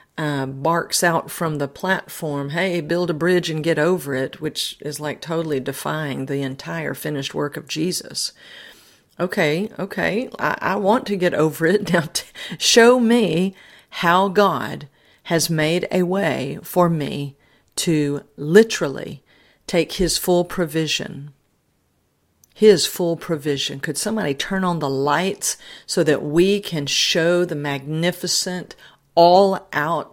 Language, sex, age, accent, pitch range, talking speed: English, female, 50-69, American, 140-180 Hz, 135 wpm